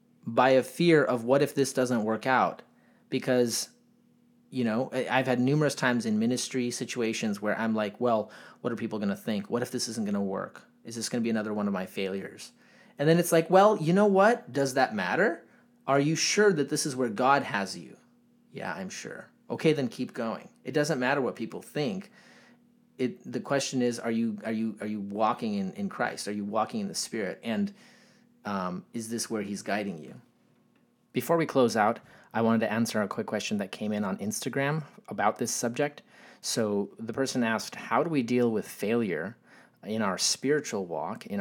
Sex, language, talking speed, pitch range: male, English, 205 wpm, 105-155 Hz